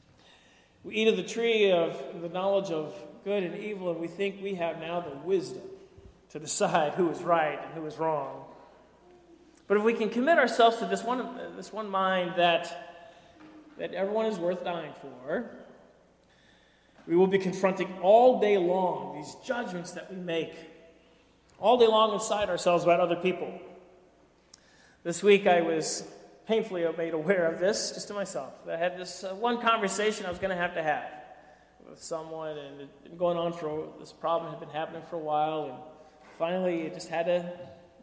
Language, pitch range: English, 165-215 Hz